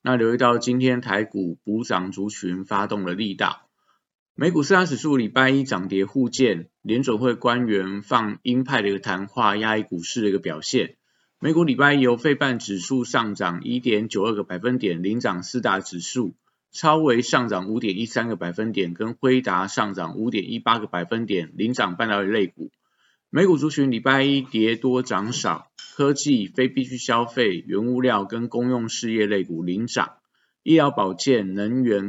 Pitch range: 100-125 Hz